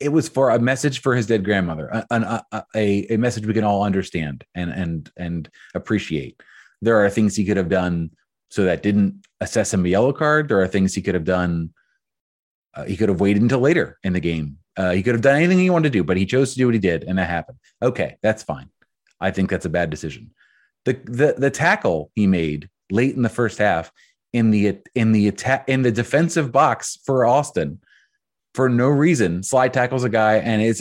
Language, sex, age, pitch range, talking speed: English, male, 30-49, 100-135 Hz, 220 wpm